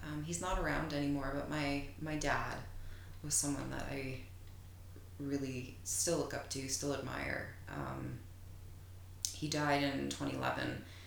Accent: American